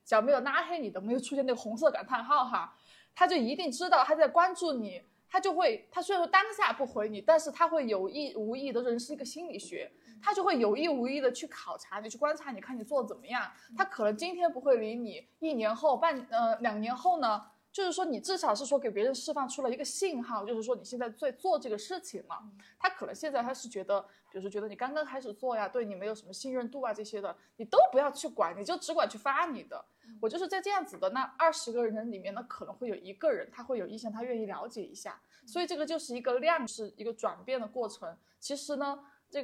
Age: 20-39